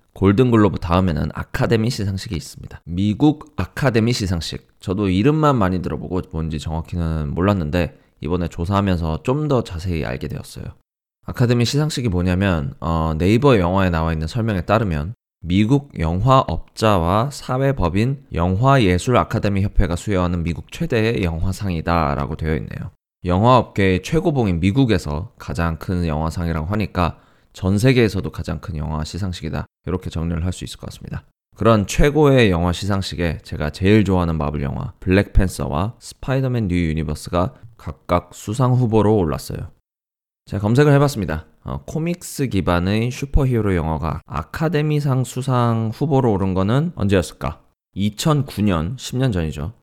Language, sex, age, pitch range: Korean, male, 20-39, 85-115 Hz